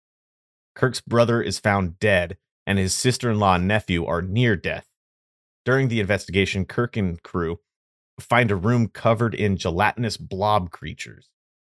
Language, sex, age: English, male, 30-49